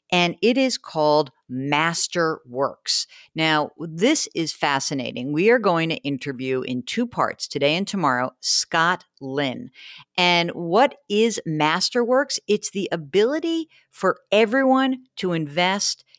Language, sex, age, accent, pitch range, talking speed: English, female, 50-69, American, 145-225 Hz, 120 wpm